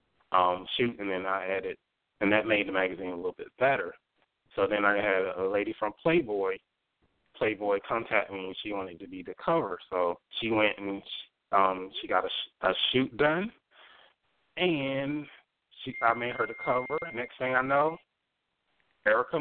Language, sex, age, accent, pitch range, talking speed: English, male, 20-39, American, 95-130 Hz, 175 wpm